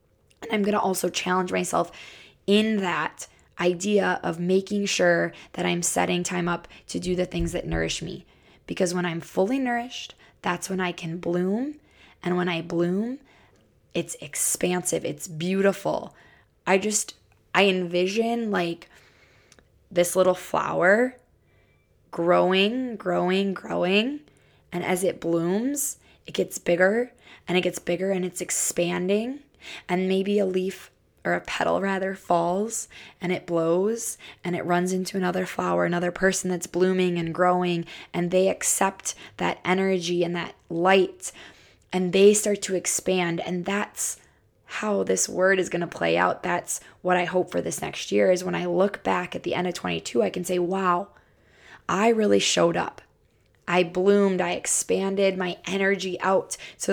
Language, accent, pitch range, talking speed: English, American, 175-195 Hz, 155 wpm